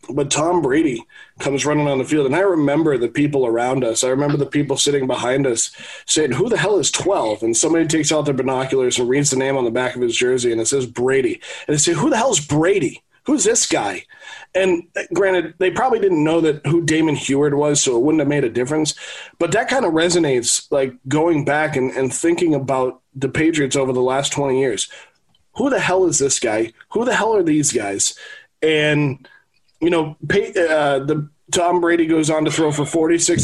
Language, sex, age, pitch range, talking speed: English, male, 20-39, 135-170 Hz, 220 wpm